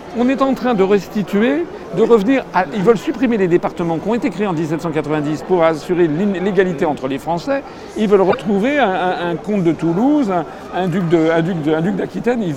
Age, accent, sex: 50-69, French, male